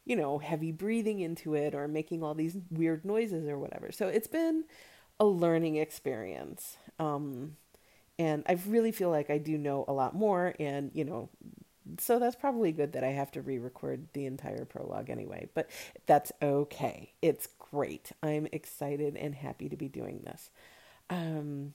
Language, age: English, 40-59